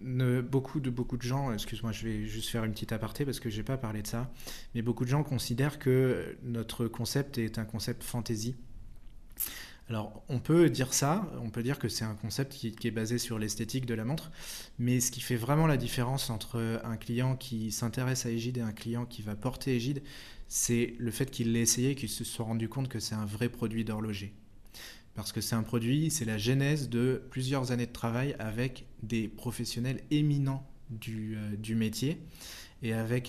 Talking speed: 205 wpm